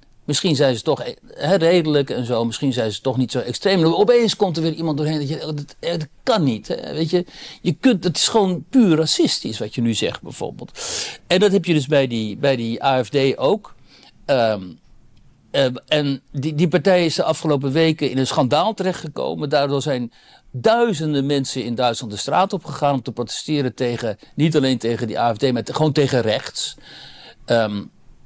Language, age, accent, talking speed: Dutch, 60-79, Dutch, 190 wpm